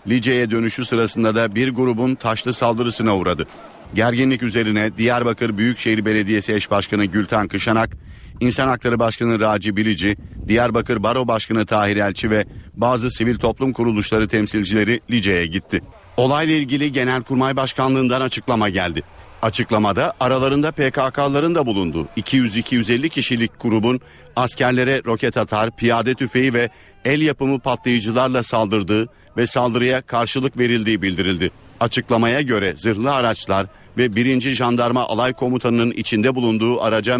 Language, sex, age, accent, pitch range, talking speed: Turkish, male, 50-69, native, 110-125 Hz, 125 wpm